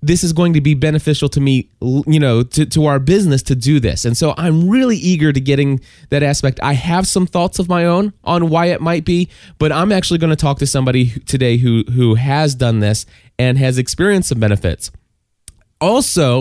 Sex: male